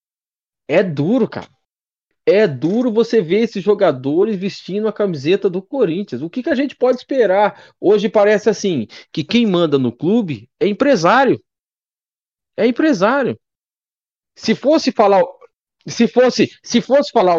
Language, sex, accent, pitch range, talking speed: Portuguese, male, Brazilian, 185-250 Hz, 130 wpm